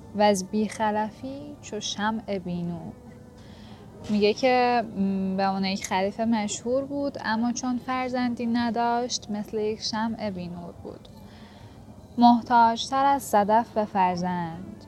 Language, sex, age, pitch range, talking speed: Persian, female, 10-29, 180-215 Hz, 115 wpm